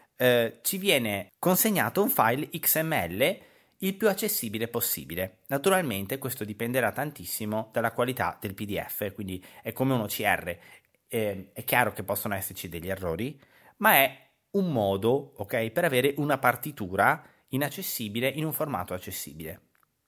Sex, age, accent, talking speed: male, 30-49, native, 135 wpm